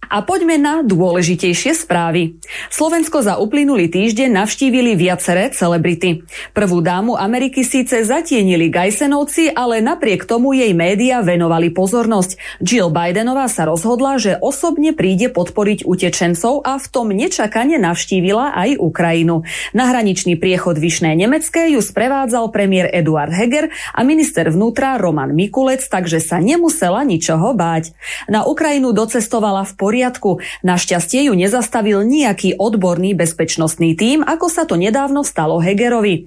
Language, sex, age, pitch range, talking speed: Slovak, female, 30-49, 180-260 Hz, 130 wpm